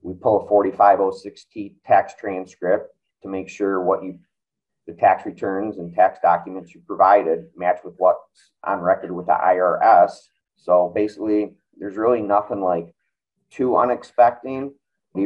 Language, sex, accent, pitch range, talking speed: English, male, American, 90-120 Hz, 140 wpm